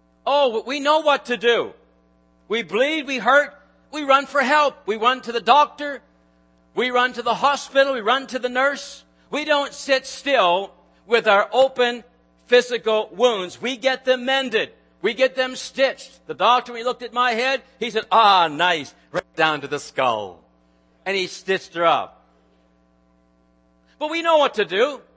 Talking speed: 180 wpm